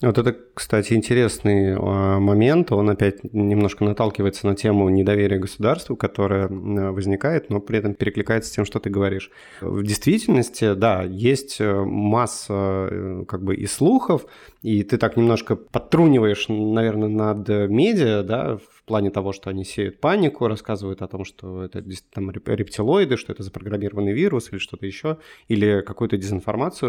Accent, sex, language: native, male, Russian